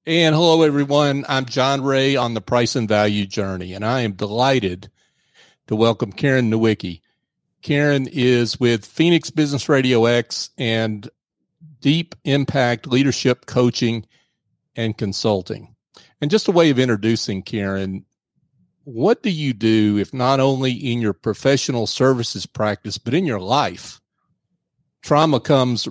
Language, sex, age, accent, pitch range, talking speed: English, male, 40-59, American, 110-135 Hz, 135 wpm